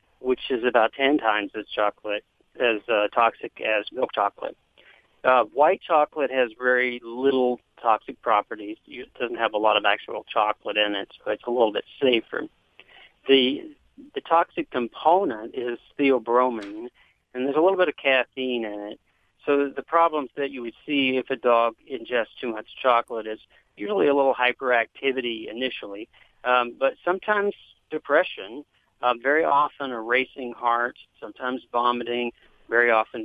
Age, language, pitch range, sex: 40-59, English, 115-145 Hz, male